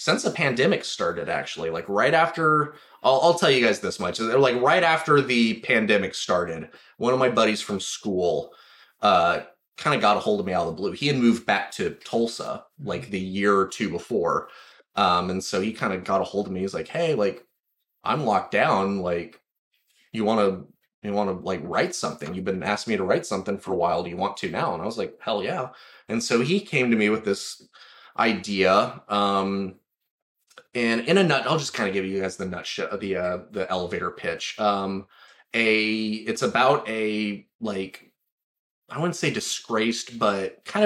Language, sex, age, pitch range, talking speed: English, male, 20-39, 95-130 Hz, 210 wpm